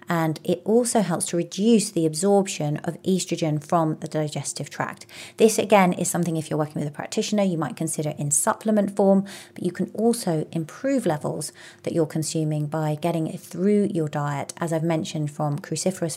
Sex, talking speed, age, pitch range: female, 185 wpm, 30-49, 155-180 Hz